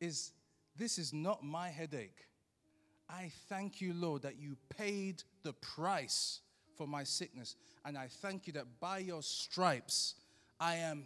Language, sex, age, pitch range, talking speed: English, male, 30-49, 145-195 Hz, 150 wpm